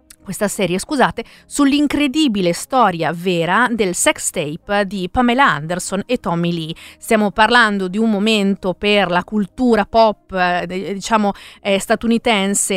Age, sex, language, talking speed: 40-59, female, Italian, 125 wpm